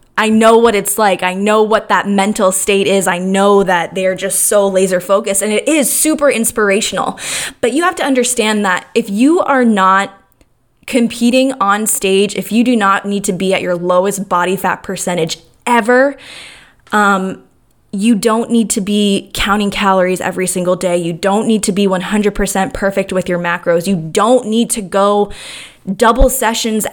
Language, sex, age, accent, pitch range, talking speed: English, female, 20-39, American, 190-235 Hz, 180 wpm